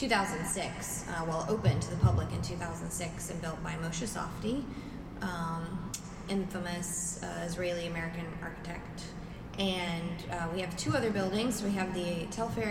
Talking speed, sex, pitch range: 140 wpm, female, 170-190 Hz